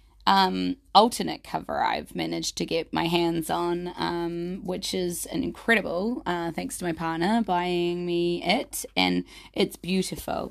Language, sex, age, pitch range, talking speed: English, female, 20-39, 165-190 Hz, 150 wpm